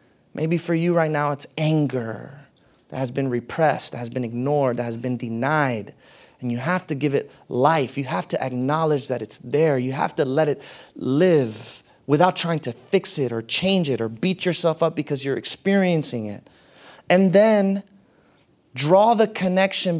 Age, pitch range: 30-49, 140-185 Hz